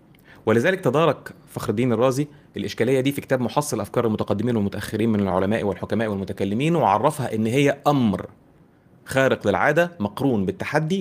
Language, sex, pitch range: Arabic, male, 100-140 Hz